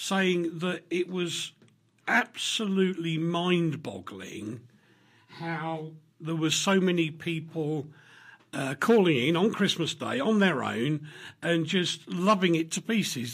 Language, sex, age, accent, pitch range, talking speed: English, male, 50-69, British, 135-170 Hz, 120 wpm